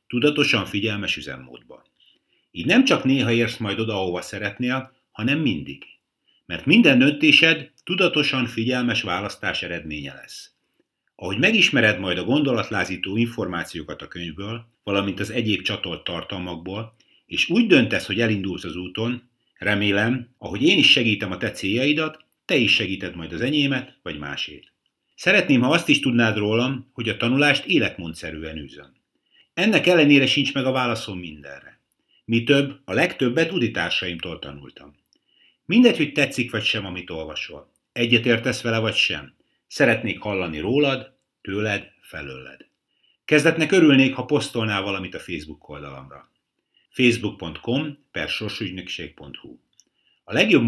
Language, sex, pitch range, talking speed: Hungarian, male, 95-130 Hz, 130 wpm